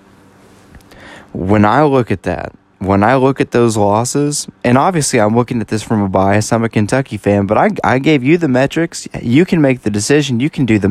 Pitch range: 95-120 Hz